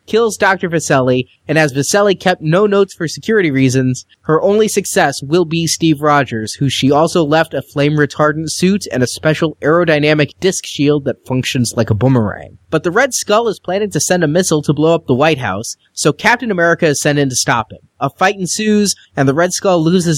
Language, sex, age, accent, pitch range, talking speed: English, male, 30-49, American, 140-185 Hz, 210 wpm